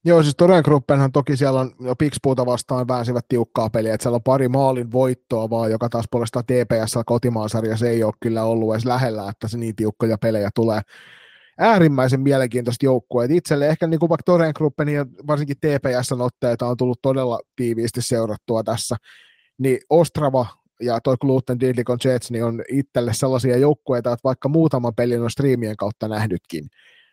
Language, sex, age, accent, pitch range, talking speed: Finnish, male, 30-49, native, 115-140 Hz, 165 wpm